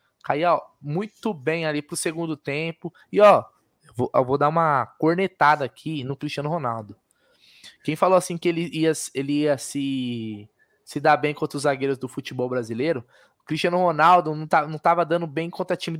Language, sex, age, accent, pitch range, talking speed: Portuguese, male, 20-39, Brazilian, 145-205 Hz, 185 wpm